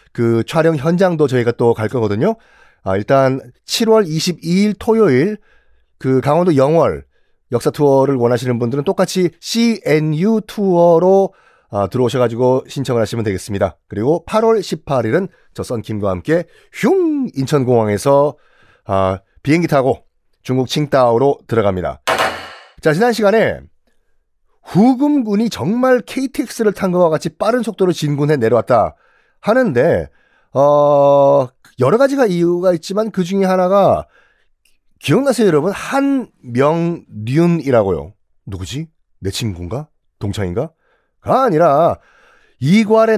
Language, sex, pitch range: Korean, male, 125-200 Hz